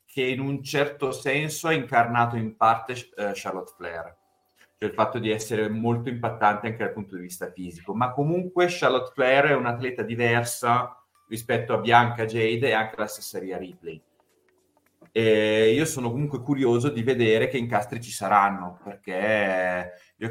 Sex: male